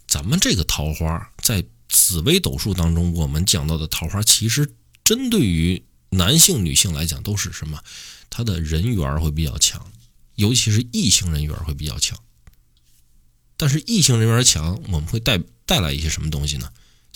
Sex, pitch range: male, 75-105 Hz